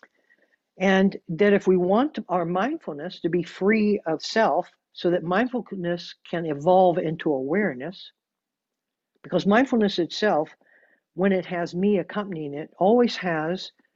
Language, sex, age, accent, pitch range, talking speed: English, male, 60-79, American, 165-205 Hz, 130 wpm